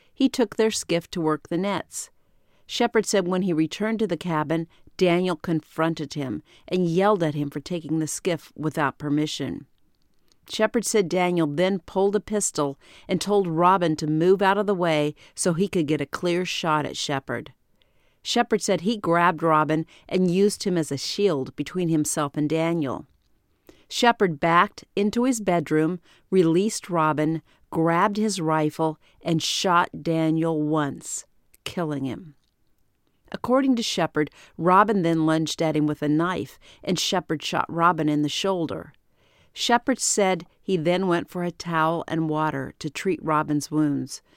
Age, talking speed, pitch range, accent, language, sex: 50-69, 160 wpm, 155-190 Hz, American, English, female